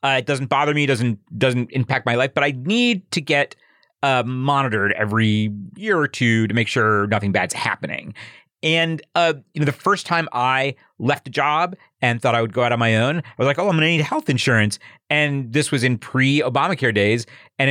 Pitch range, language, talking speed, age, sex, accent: 120-155 Hz, English, 215 wpm, 40-59, male, American